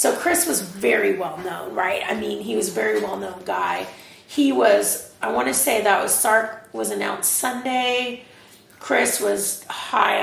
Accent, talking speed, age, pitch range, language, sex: American, 175 wpm, 30-49, 165-195 Hz, English, female